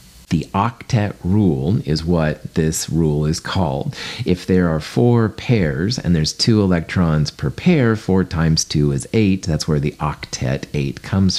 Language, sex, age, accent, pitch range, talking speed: English, male, 40-59, American, 75-105 Hz, 165 wpm